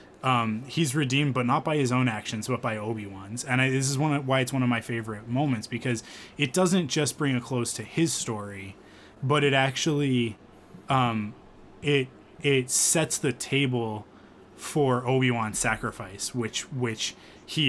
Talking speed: 175 wpm